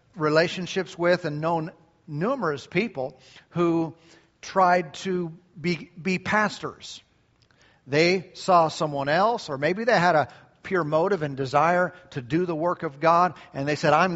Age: 50-69